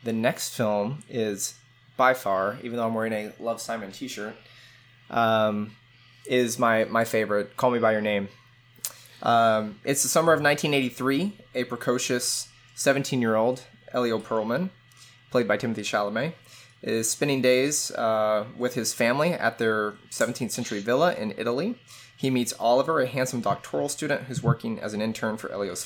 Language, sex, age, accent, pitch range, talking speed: English, male, 20-39, American, 105-125 Hz, 155 wpm